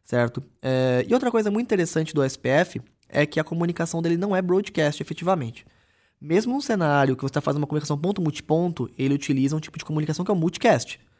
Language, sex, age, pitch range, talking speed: Portuguese, male, 20-39, 135-180 Hz, 205 wpm